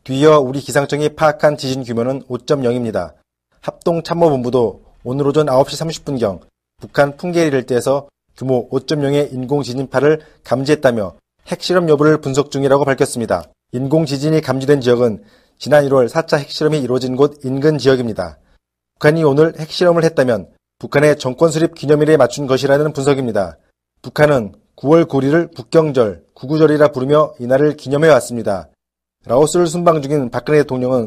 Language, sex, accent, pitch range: Korean, male, native, 130-155 Hz